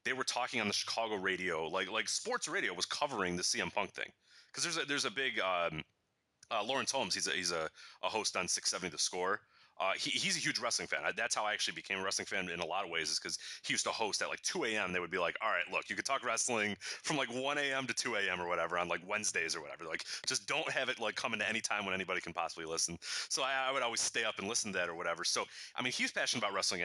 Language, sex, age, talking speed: English, male, 30-49, 290 wpm